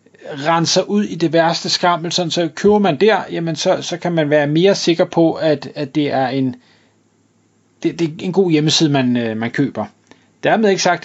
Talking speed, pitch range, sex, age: 205 wpm, 145-190 Hz, male, 30-49